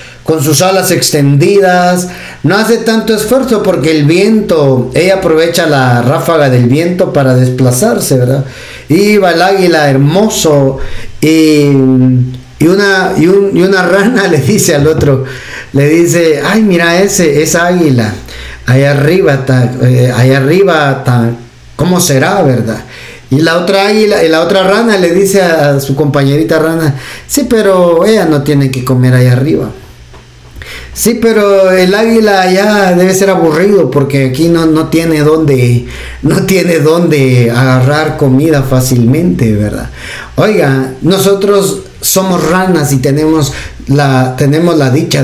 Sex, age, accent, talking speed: male, 50-69, Mexican, 145 wpm